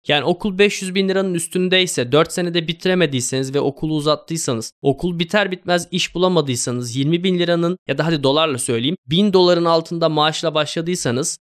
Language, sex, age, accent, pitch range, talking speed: Turkish, male, 20-39, native, 125-175 Hz, 155 wpm